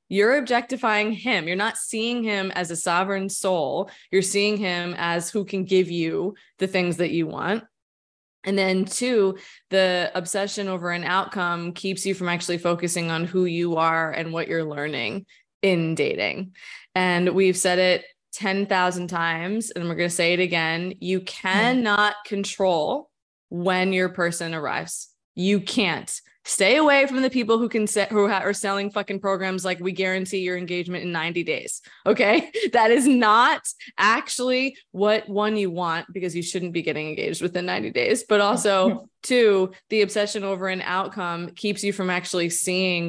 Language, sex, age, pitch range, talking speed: English, female, 20-39, 175-205 Hz, 170 wpm